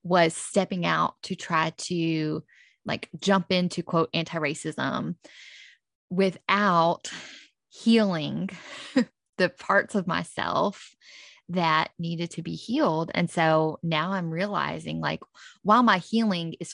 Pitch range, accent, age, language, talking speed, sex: 165-210 Hz, American, 20-39, English, 115 wpm, female